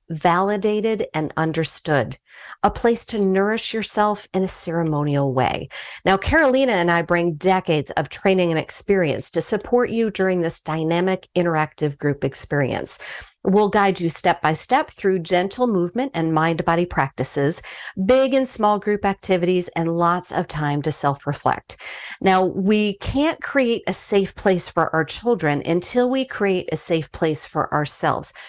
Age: 40-59